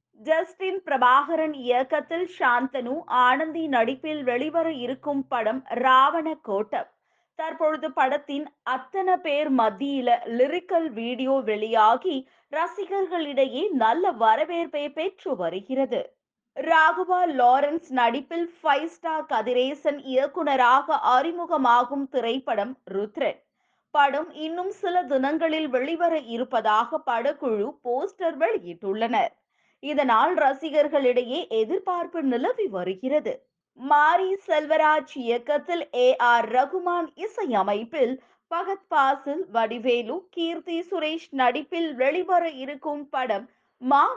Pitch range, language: 255-330 Hz, Tamil